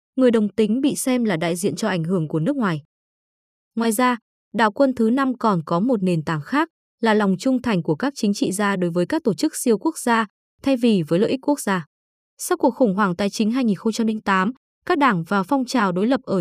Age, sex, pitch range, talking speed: 20-39, female, 190-255 Hz, 240 wpm